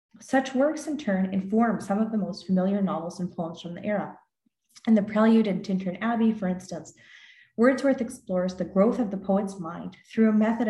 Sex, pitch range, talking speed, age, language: female, 185-215 Hz, 195 wpm, 30-49, English